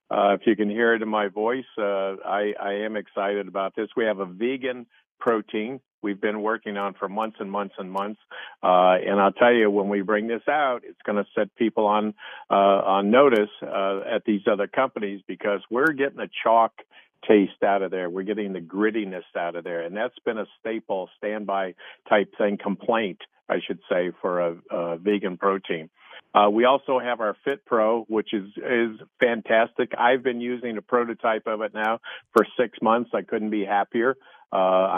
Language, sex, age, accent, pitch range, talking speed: English, male, 50-69, American, 100-115 Hz, 195 wpm